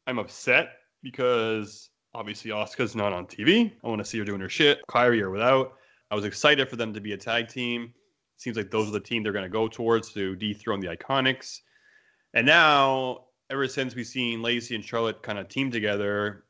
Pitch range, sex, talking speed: 105-130 Hz, male, 205 wpm